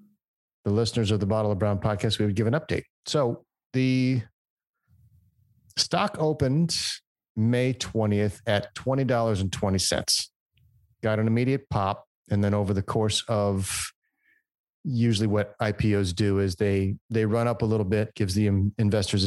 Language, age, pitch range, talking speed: English, 30-49, 100-115 Hz, 145 wpm